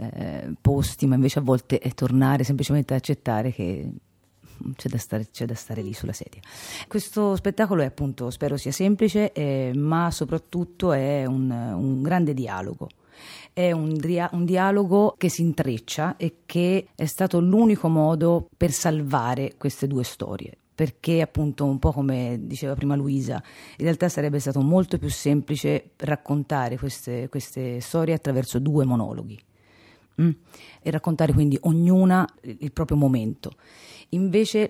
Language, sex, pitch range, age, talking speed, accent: Italian, female, 130-165 Hz, 40-59, 140 wpm, native